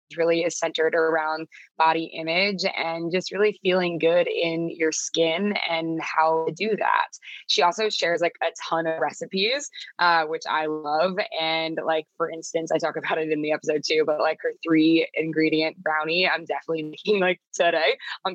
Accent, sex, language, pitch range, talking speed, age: American, female, English, 160-195 Hz, 180 wpm, 20-39